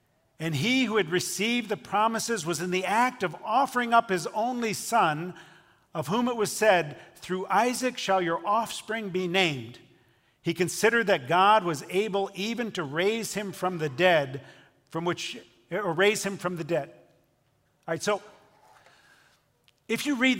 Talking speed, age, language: 165 wpm, 50-69, English